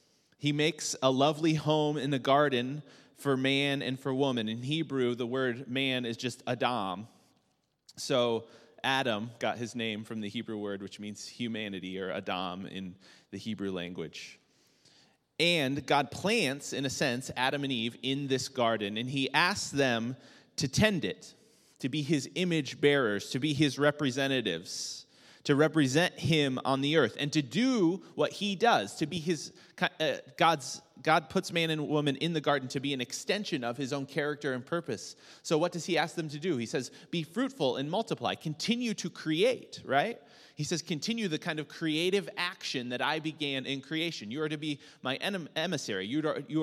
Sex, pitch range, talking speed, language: male, 130-160 Hz, 180 wpm, English